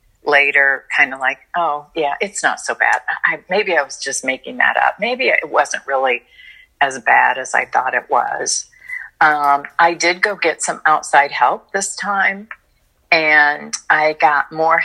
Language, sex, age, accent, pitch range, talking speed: English, female, 40-59, American, 140-170 Hz, 175 wpm